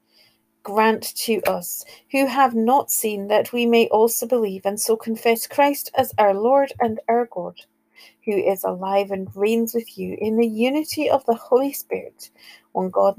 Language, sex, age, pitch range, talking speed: English, female, 40-59, 170-255 Hz, 175 wpm